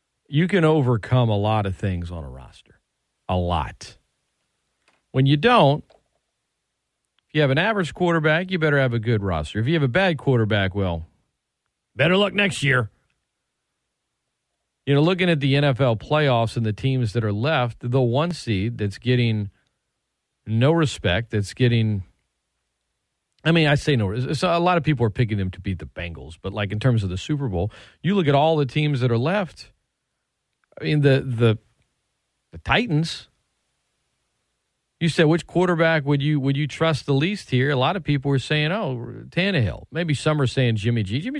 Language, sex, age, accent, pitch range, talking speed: English, male, 40-59, American, 105-150 Hz, 185 wpm